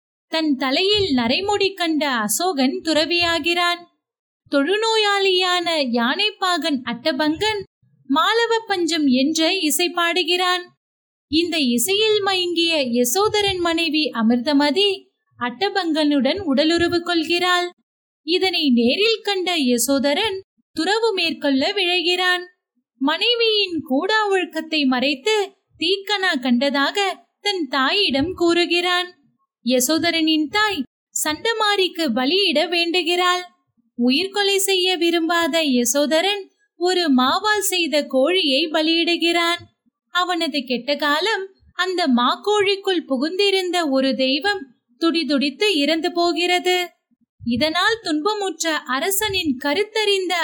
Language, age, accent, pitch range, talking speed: Tamil, 30-49, native, 285-375 Hz, 80 wpm